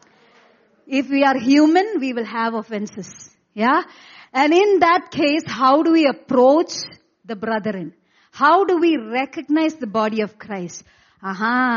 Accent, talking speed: Indian, 145 wpm